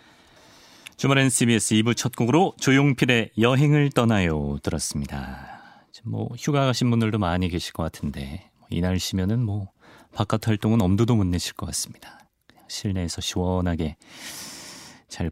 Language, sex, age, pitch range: Korean, male, 30-49, 95-135 Hz